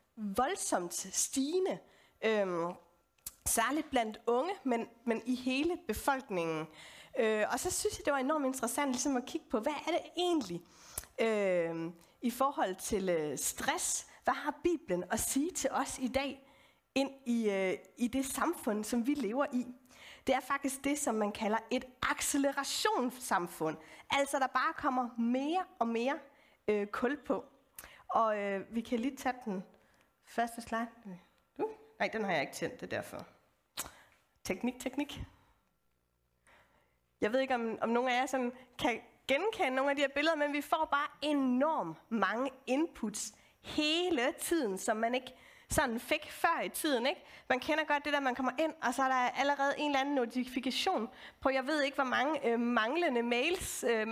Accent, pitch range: native, 225-290 Hz